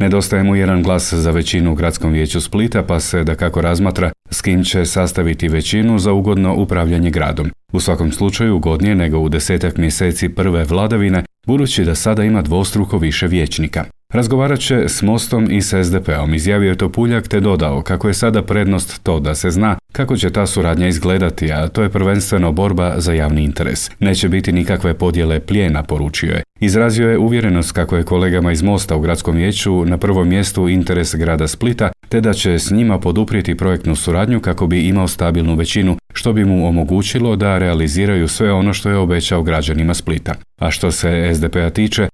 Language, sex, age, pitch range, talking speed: Croatian, male, 40-59, 85-105 Hz, 180 wpm